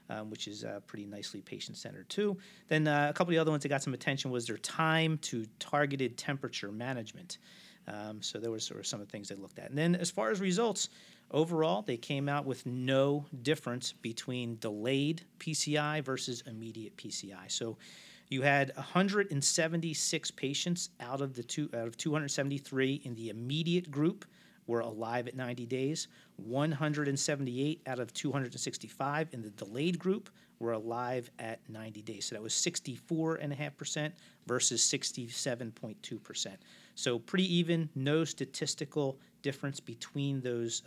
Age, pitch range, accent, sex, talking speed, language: 40-59, 120-155 Hz, American, male, 155 wpm, English